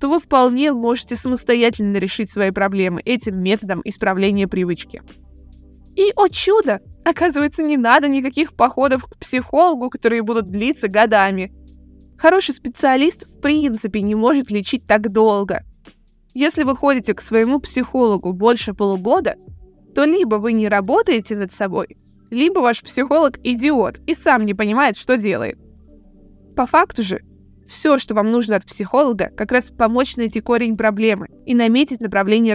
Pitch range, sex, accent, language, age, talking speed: 210-275 Hz, female, native, Russian, 20-39, 145 wpm